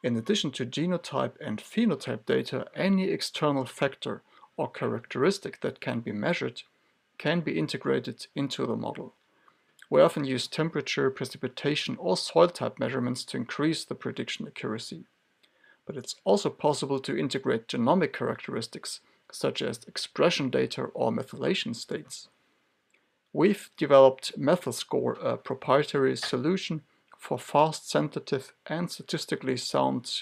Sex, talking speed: male, 125 wpm